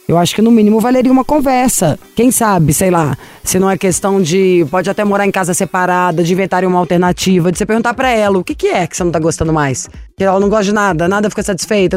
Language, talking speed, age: Portuguese, 245 wpm, 20-39